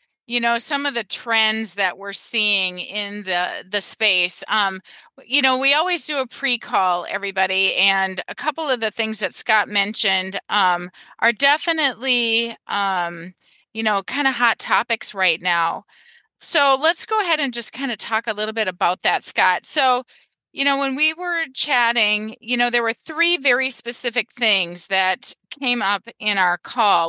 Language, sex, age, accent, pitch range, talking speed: English, female, 30-49, American, 195-265 Hz, 175 wpm